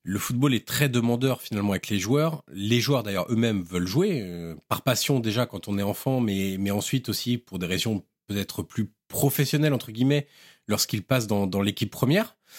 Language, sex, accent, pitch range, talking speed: French, male, French, 105-130 Hz, 195 wpm